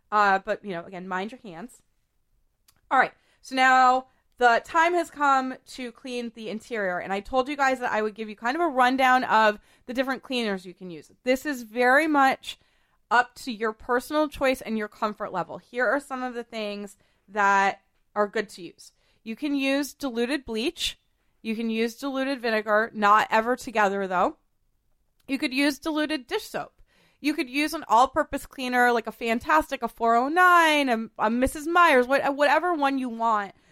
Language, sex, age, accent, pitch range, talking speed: English, female, 30-49, American, 220-275 Hz, 185 wpm